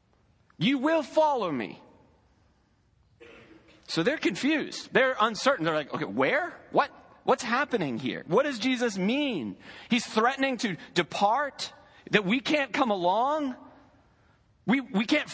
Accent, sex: American, male